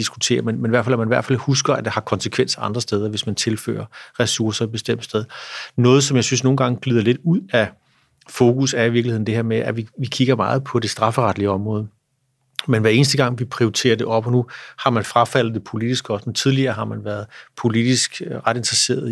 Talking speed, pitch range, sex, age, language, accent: 235 wpm, 110-125 Hz, male, 30-49, Danish, native